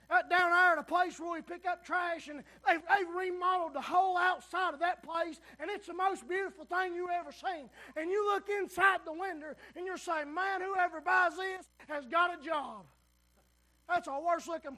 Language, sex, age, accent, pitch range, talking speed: English, male, 20-39, American, 275-355 Hz, 205 wpm